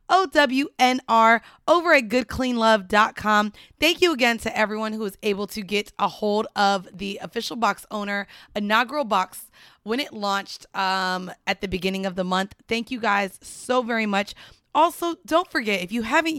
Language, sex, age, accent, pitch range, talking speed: English, female, 20-39, American, 210-285 Hz, 175 wpm